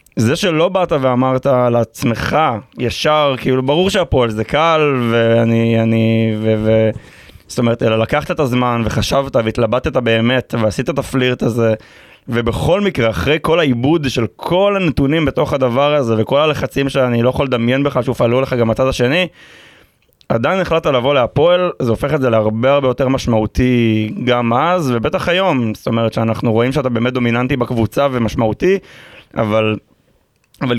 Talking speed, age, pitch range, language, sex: 150 wpm, 20-39, 115-140 Hz, Hebrew, male